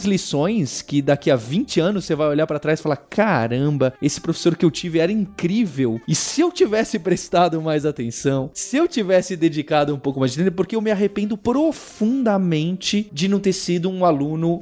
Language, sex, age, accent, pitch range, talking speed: Portuguese, male, 20-39, Brazilian, 145-200 Hz, 195 wpm